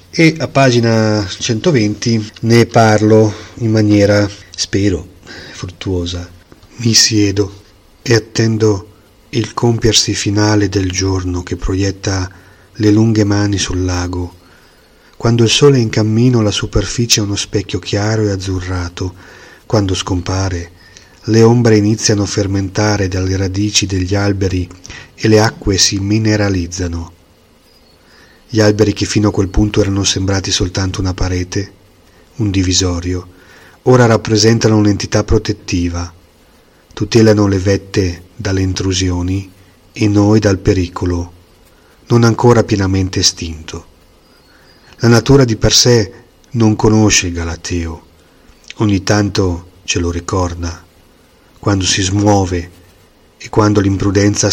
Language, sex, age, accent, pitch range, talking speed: Italian, male, 30-49, native, 90-110 Hz, 120 wpm